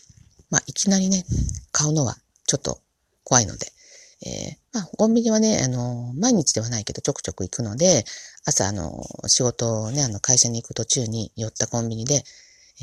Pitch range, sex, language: 115-175 Hz, female, Japanese